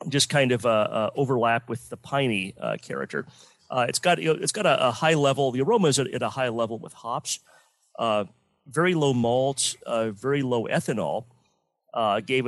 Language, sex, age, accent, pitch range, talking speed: English, male, 40-59, American, 115-145 Hz, 190 wpm